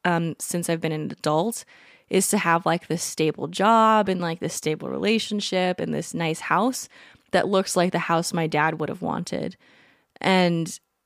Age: 20-39